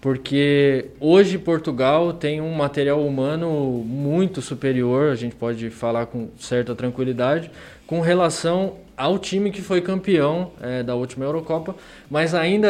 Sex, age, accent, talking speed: male, 20-39, Brazilian, 135 wpm